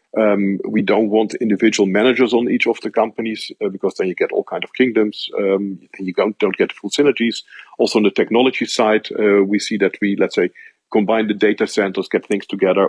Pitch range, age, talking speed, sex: 100-120 Hz, 50-69, 215 wpm, male